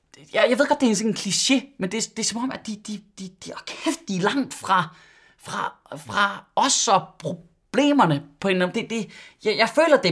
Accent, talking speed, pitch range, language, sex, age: native, 215 wpm, 155-245 Hz, Danish, male, 20-39